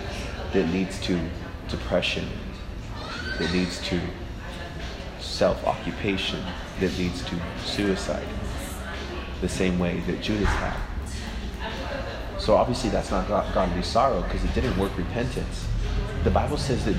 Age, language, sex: 30-49, English, male